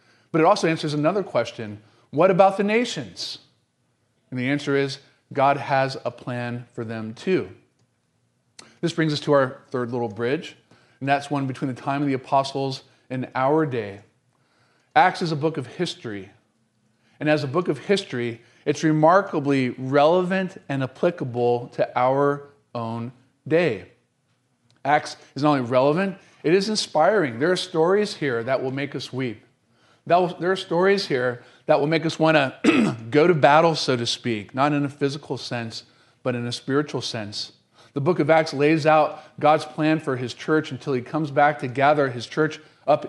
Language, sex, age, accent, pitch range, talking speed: English, male, 40-59, American, 125-160 Hz, 175 wpm